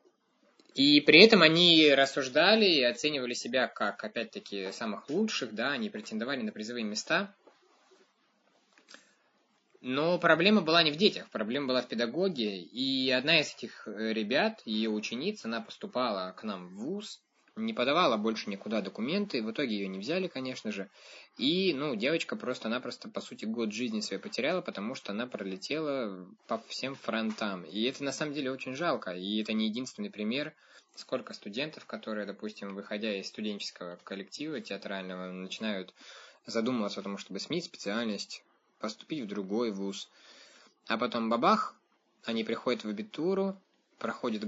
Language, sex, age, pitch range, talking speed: Russian, male, 20-39, 105-155 Hz, 150 wpm